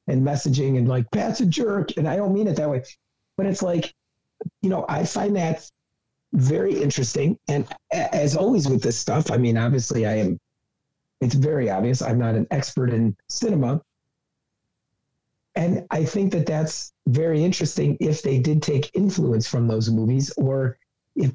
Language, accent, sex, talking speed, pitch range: English, American, male, 170 wpm, 125-155 Hz